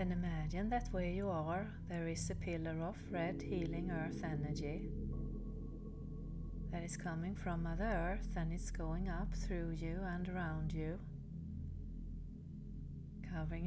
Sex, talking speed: female, 135 wpm